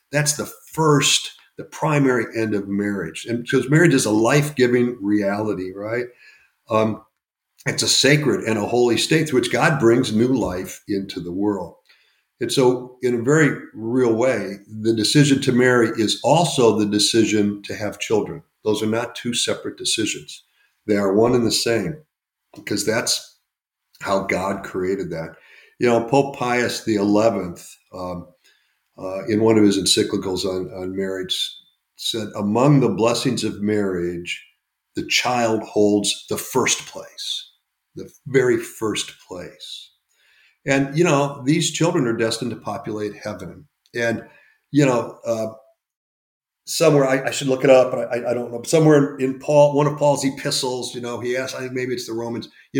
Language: English